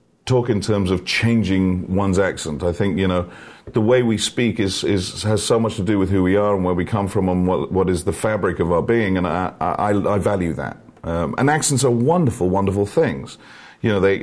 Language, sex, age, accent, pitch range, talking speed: English, male, 50-69, British, 90-115 Hz, 235 wpm